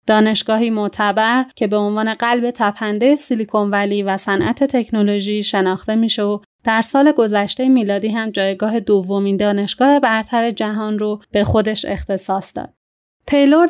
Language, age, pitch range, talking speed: Persian, 30-49, 205-245 Hz, 135 wpm